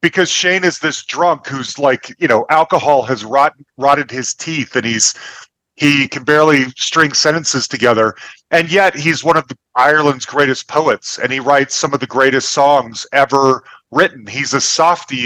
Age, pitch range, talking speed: 40-59, 130-165 Hz, 175 wpm